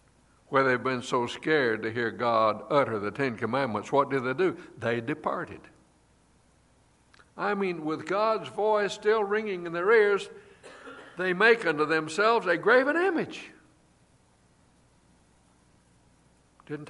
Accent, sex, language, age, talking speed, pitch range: American, male, English, 60-79, 130 wpm, 125-190 Hz